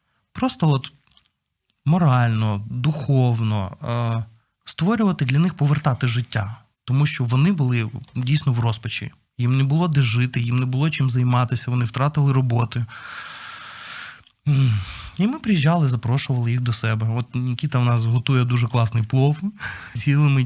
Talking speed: 130 wpm